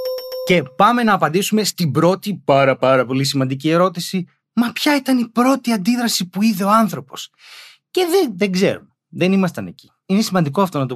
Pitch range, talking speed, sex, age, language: 130-190 Hz, 175 wpm, male, 30-49, Greek